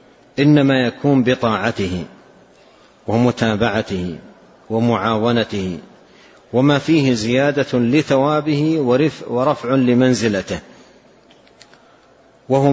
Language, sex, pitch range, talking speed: Arabic, male, 110-135 Hz, 60 wpm